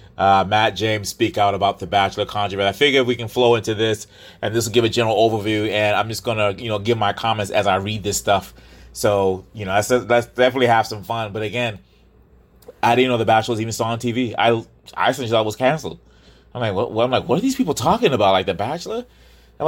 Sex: male